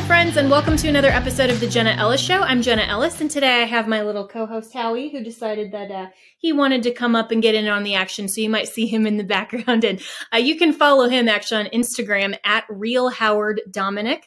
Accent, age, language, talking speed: American, 20-39, English, 235 wpm